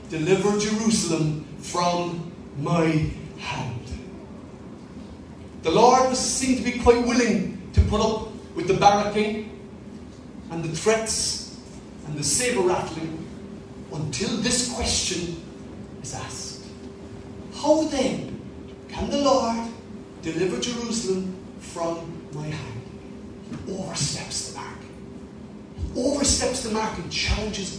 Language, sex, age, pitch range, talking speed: English, male, 40-59, 170-220 Hz, 110 wpm